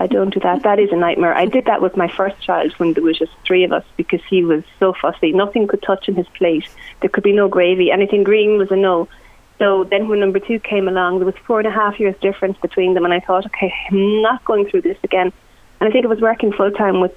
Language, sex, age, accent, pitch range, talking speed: English, female, 30-49, Irish, 180-205 Hz, 275 wpm